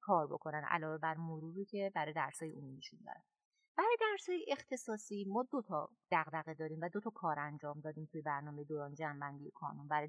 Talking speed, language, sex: 185 wpm, Persian, female